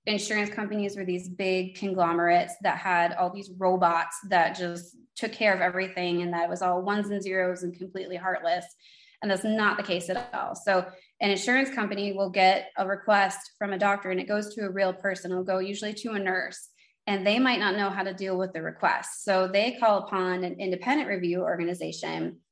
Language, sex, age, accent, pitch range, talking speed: English, female, 20-39, American, 180-210 Hz, 210 wpm